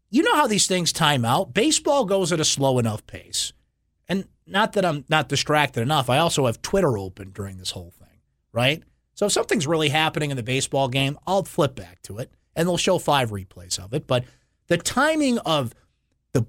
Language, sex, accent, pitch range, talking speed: English, male, American, 110-165 Hz, 210 wpm